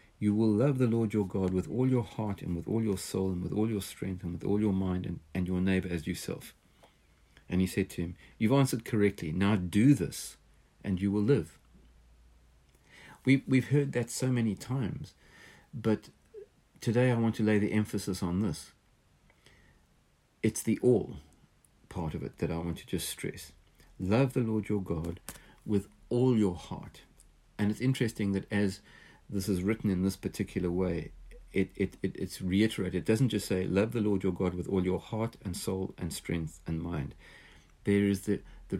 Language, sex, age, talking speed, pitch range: English, male, 50-69, 190 wpm, 90-110 Hz